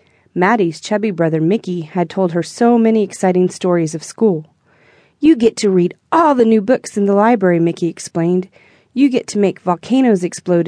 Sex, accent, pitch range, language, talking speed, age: female, American, 175-225 Hz, English, 180 wpm, 30-49